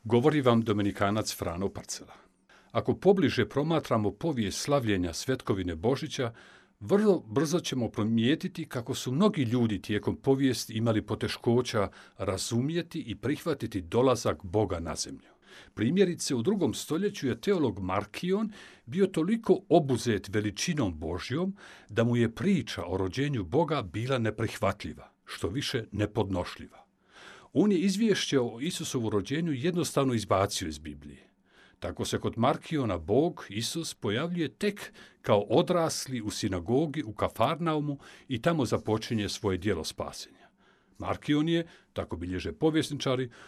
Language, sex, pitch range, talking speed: Croatian, male, 105-155 Hz, 125 wpm